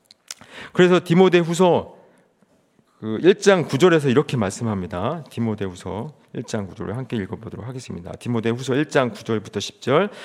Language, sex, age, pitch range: Korean, male, 40-59, 125-195 Hz